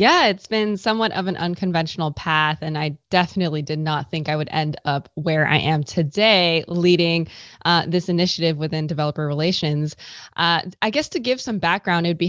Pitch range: 155-190 Hz